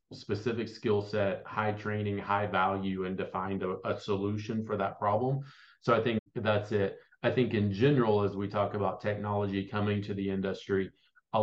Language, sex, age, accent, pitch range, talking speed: English, male, 30-49, American, 95-105 Hz, 185 wpm